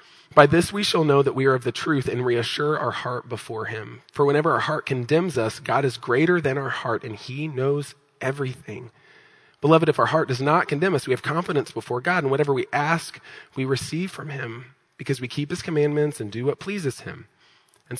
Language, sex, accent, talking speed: English, male, American, 215 wpm